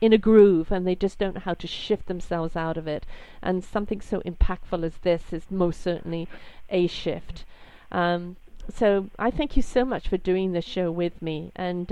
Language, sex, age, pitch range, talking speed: English, female, 50-69, 175-205 Hz, 200 wpm